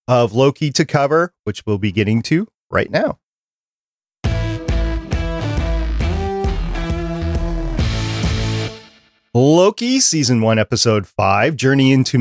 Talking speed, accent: 90 wpm, American